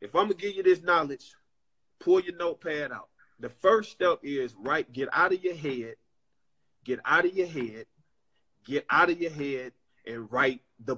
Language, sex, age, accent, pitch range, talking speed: English, male, 30-49, American, 170-230 Hz, 190 wpm